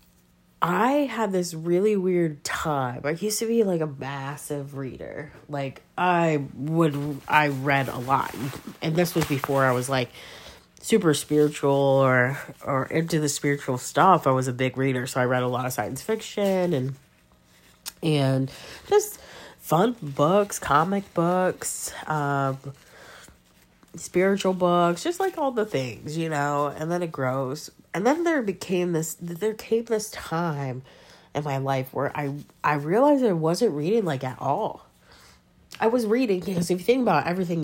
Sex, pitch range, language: female, 135-180 Hz, English